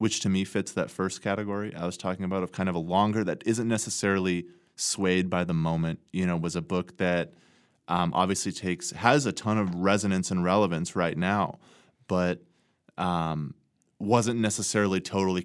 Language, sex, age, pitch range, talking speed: English, male, 20-39, 85-100 Hz, 180 wpm